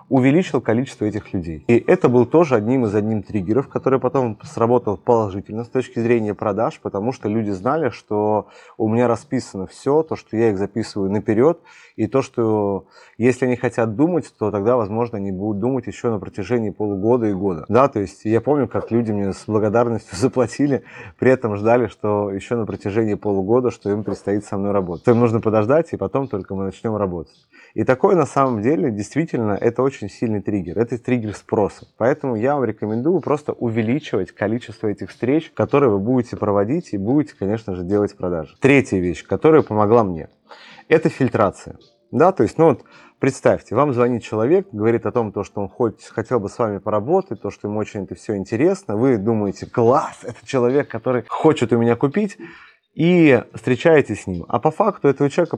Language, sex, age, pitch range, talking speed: Russian, male, 20-39, 105-130 Hz, 185 wpm